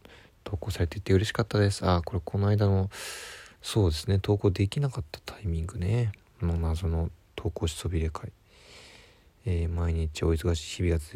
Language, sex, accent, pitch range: Japanese, male, native, 85-115 Hz